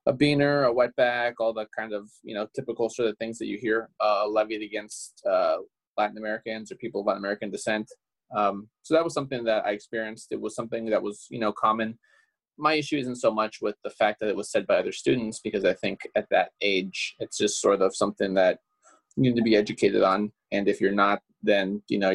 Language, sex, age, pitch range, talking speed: English, male, 20-39, 100-115 Hz, 230 wpm